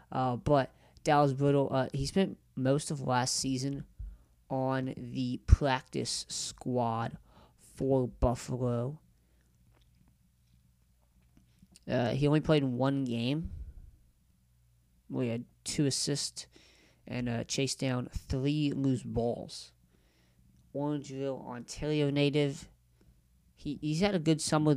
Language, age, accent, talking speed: English, 20-39, American, 105 wpm